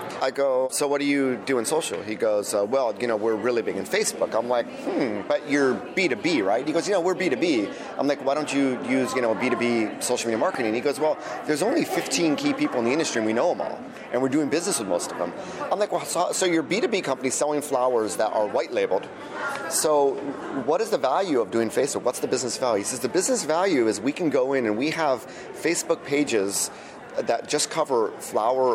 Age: 30-49